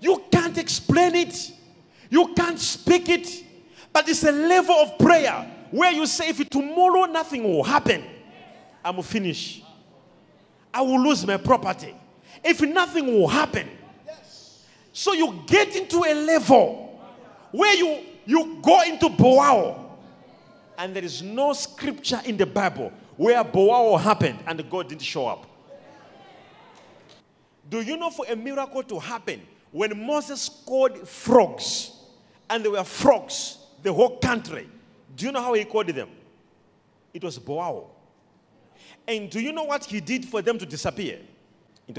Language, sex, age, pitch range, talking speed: English, male, 40-59, 195-305 Hz, 145 wpm